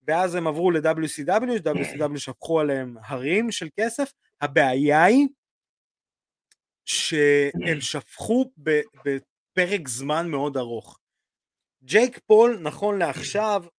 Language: Hebrew